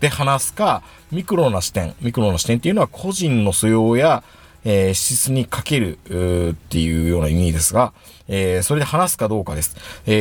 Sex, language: male, Japanese